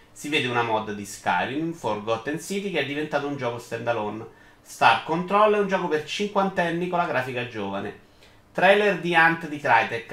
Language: Italian